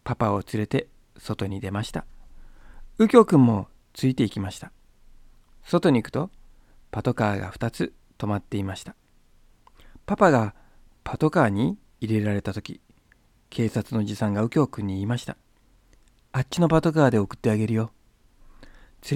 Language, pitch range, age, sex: Japanese, 100-150 Hz, 40-59, male